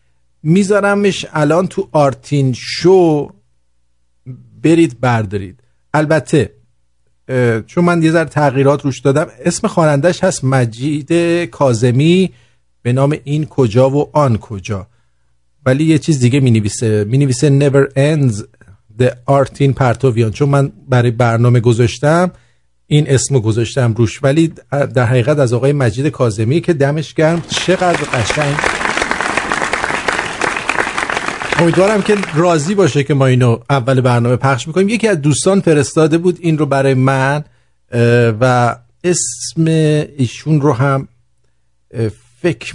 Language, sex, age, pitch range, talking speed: English, male, 50-69, 120-155 Hz, 125 wpm